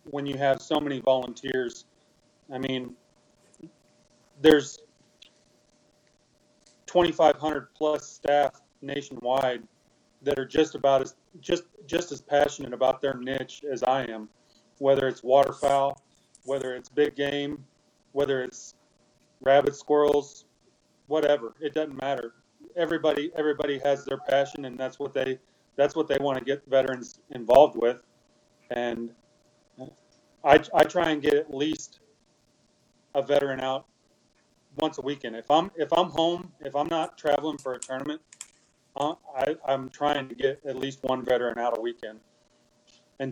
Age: 30-49